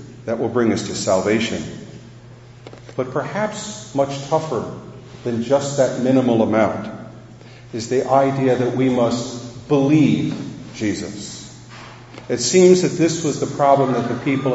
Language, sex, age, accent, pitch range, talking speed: English, male, 50-69, American, 115-150 Hz, 135 wpm